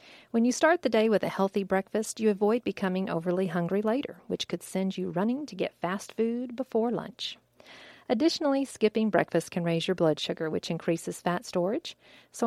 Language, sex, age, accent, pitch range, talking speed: English, female, 40-59, American, 170-220 Hz, 190 wpm